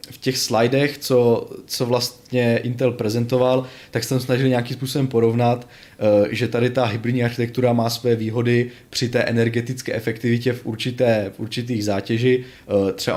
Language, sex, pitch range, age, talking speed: Czech, male, 110-125 Hz, 20-39, 145 wpm